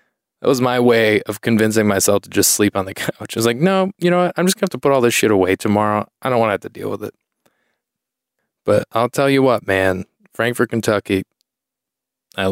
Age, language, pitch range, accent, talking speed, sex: 20-39, English, 105-140 Hz, American, 230 wpm, male